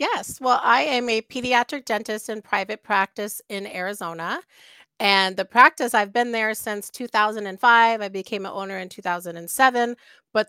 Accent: American